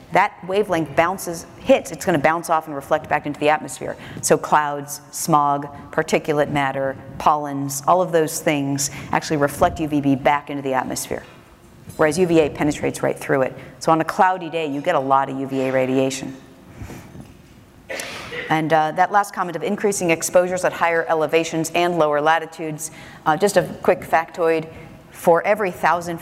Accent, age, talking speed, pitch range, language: American, 40-59, 160 wpm, 150-180 Hz, English